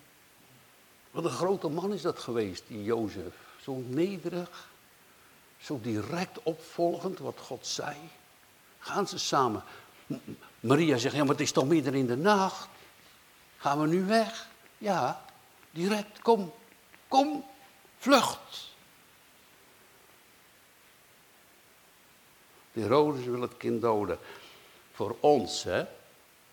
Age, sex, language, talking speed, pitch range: 60-79, male, Dutch, 115 wpm, 115-170 Hz